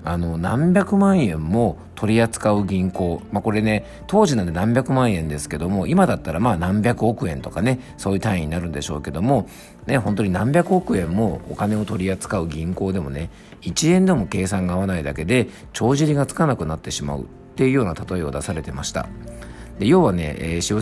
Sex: male